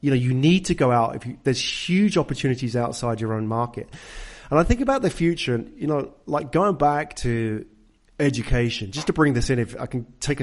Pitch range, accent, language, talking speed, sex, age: 115-145 Hz, British, English, 220 wpm, male, 30-49